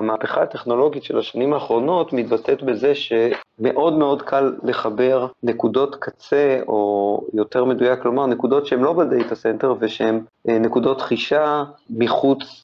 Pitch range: 115-135 Hz